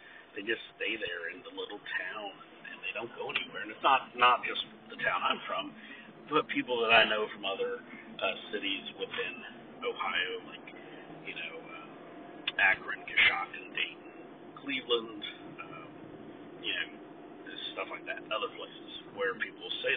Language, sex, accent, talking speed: English, male, American, 160 wpm